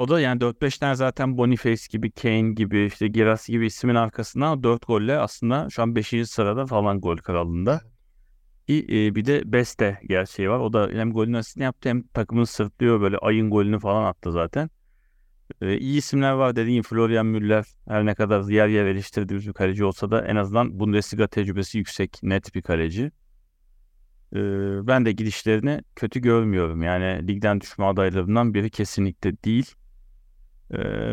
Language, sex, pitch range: Turkish, male, 100-120 Hz